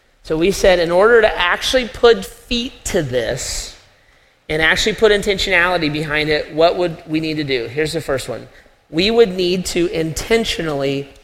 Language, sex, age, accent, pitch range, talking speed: English, male, 40-59, American, 160-195 Hz, 170 wpm